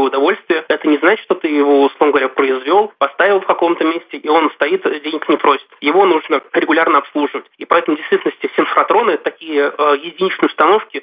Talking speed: 185 wpm